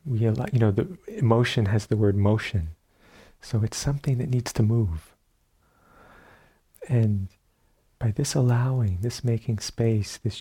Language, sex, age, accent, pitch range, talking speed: English, male, 40-59, American, 100-120 Hz, 145 wpm